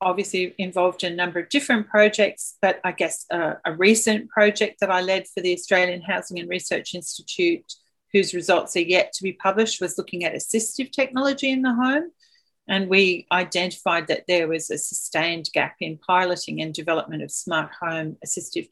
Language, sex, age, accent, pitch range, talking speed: English, female, 40-59, Australian, 175-215 Hz, 185 wpm